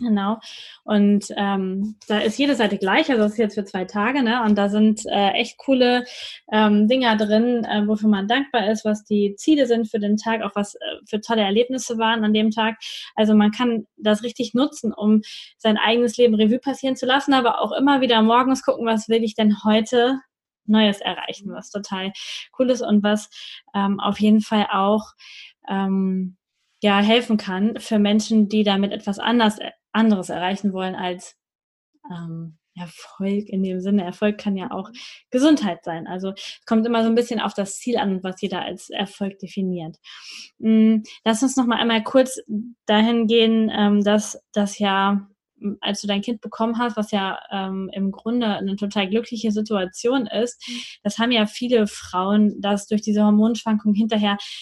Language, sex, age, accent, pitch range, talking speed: German, female, 20-39, German, 205-230 Hz, 180 wpm